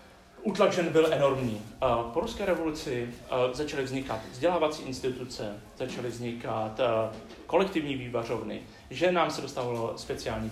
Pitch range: 115-155 Hz